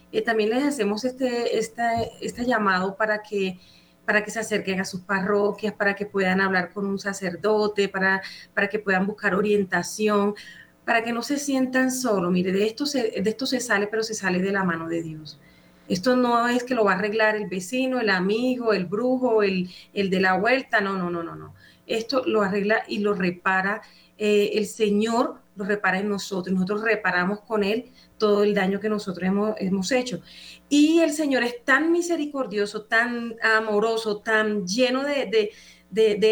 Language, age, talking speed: Spanish, 30-49, 190 wpm